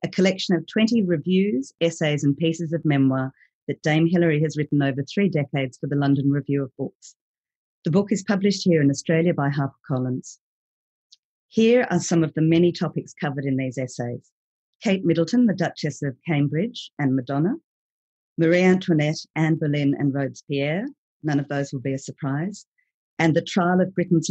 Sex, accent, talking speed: female, Australian, 175 wpm